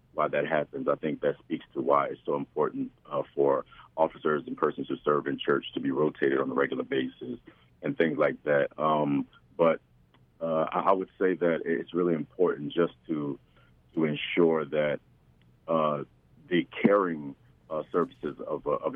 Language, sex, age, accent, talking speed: English, male, 40-59, American, 175 wpm